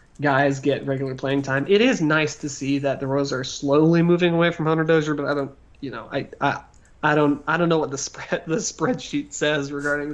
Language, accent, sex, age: English, American, male, 30-49